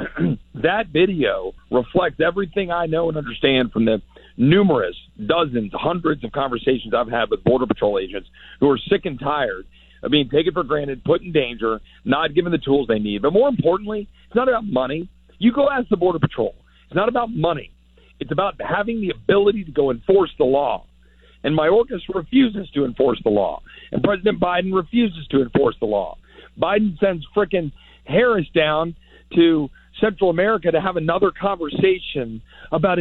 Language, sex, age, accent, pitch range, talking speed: English, male, 50-69, American, 140-195 Hz, 175 wpm